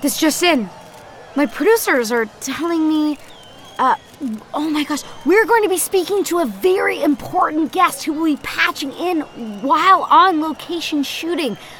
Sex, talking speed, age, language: female, 160 wpm, 30-49, English